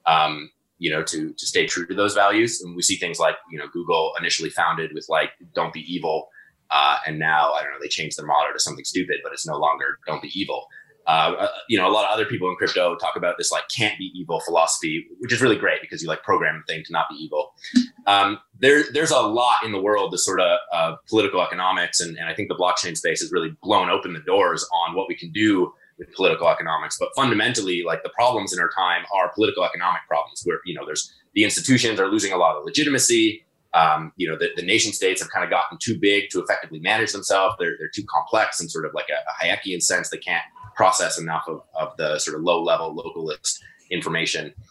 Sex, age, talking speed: male, 20-39, 240 wpm